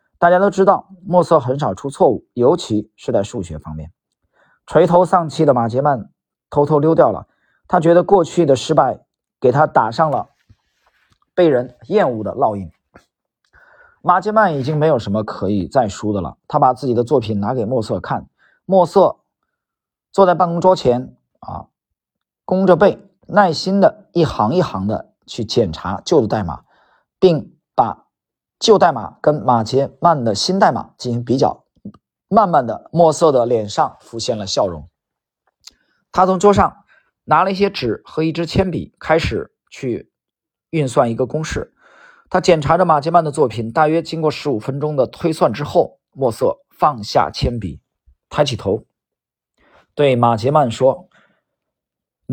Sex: male